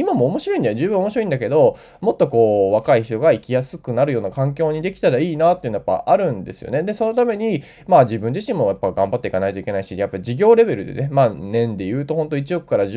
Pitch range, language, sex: 115-170 Hz, Japanese, male